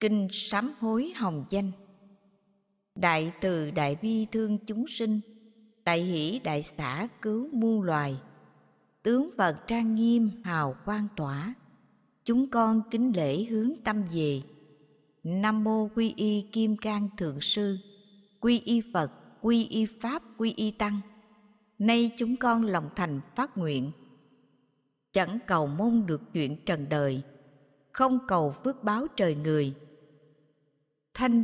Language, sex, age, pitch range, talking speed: Vietnamese, female, 60-79, 155-225 Hz, 135 wpm